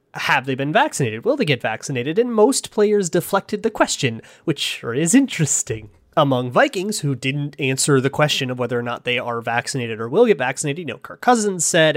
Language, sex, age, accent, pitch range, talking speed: English, male, 30-49, American, 135-195 Hz, 205 wpm